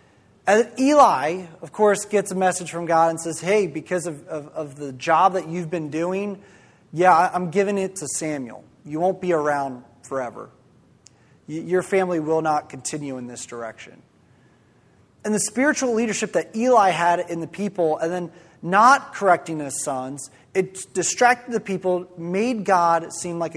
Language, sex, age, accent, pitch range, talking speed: English, male, 30-49, American, 160-210 Hz, 165 wpm